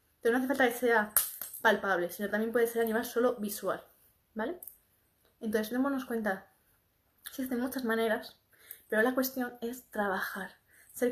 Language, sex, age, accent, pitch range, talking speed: Spanish, female, 20-39, Spanish, 220-260 Hz, 150 wpm